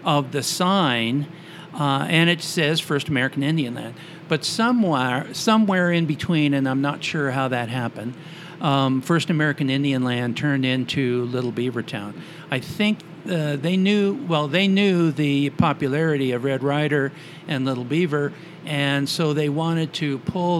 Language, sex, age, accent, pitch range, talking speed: English, male, 50-69, American, 135-170 Hz, 160 wpm